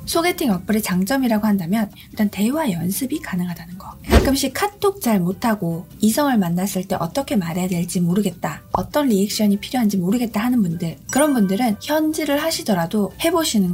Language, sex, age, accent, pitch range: Korean, female, 20-39, native, 190-265 Hz